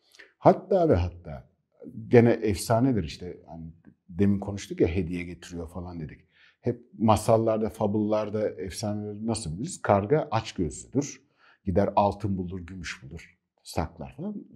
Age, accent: 50-69, native